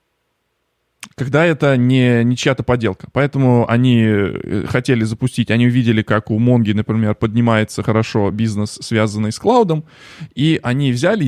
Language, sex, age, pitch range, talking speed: Russian, male, 20-39, 110-135 Hz, 135 wpm